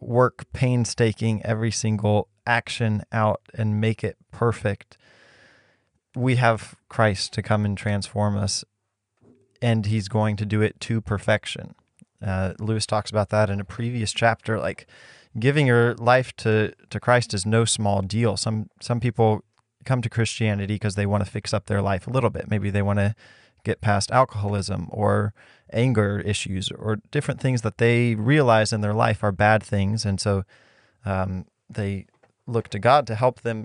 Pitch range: 105-120 Hz